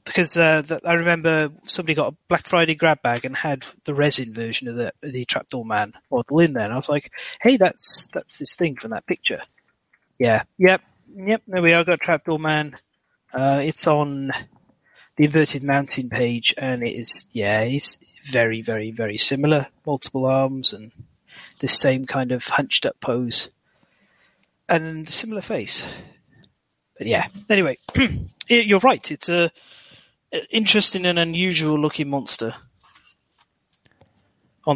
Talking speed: 155 wpm